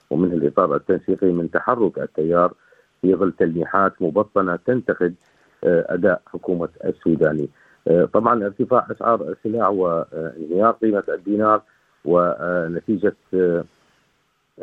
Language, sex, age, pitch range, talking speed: Arabic, male, 50-69, 85-105 Hz, 90 wpm